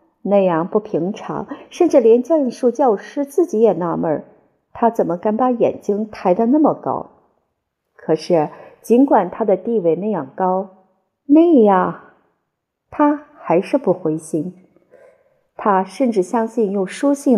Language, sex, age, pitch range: Chinese, female, 50-69, 180-255 Hz